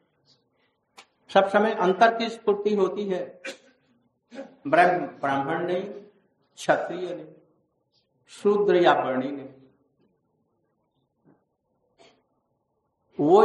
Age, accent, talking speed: 60-79, native, 70 wpm